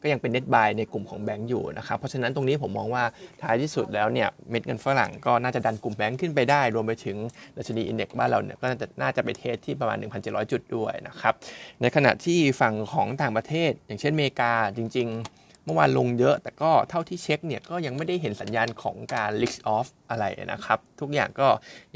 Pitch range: 110-140 Hz